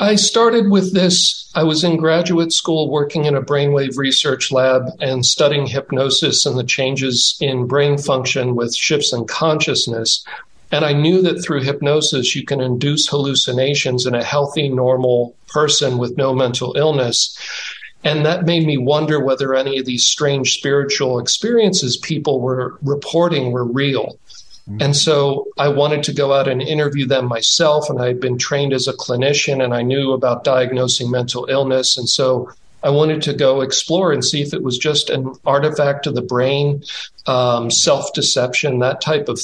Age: 50-69